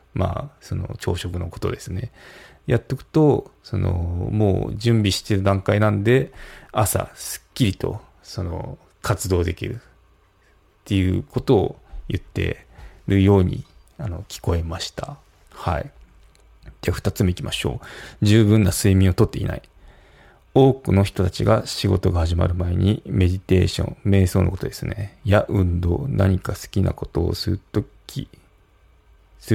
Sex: male